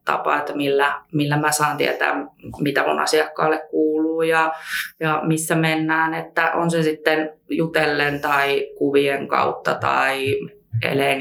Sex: female